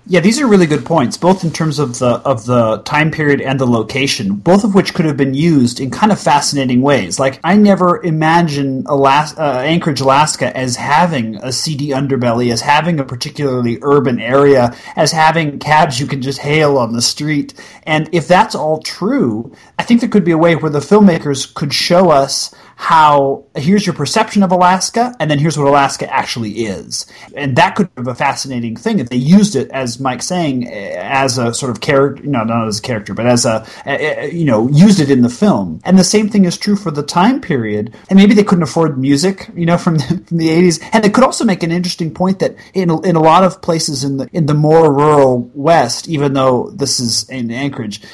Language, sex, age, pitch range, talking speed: English, male, 30-49, 135-175 Hz, 220 wpm